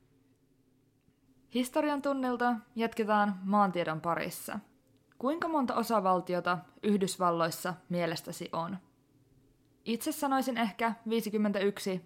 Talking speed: 75 wpm